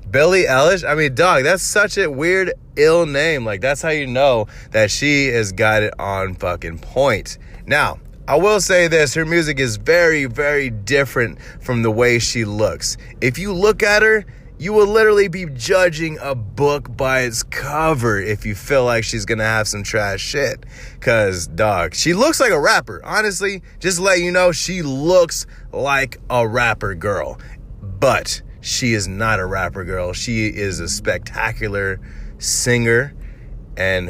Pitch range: 110-180 Hz